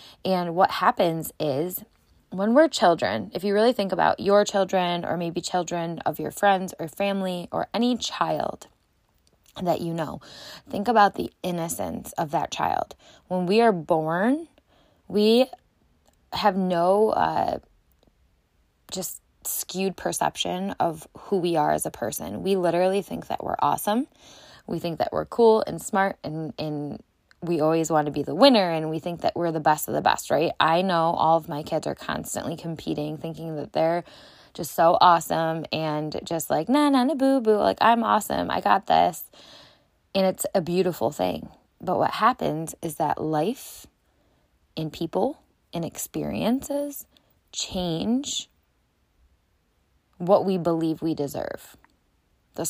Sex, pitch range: female, 160-205 Hz